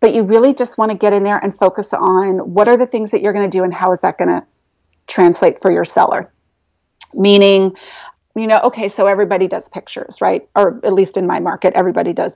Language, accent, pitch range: English, American, 190-220 Hz